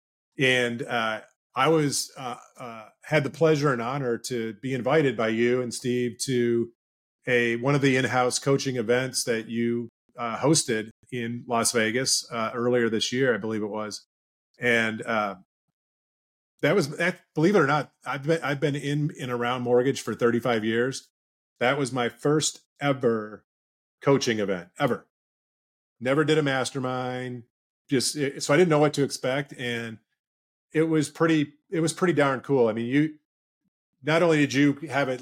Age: 30-49